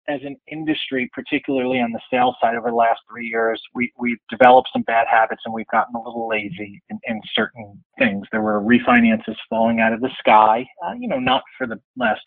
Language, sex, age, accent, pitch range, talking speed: English, male, 30-49, American, 105-120 Hz, 215 wpm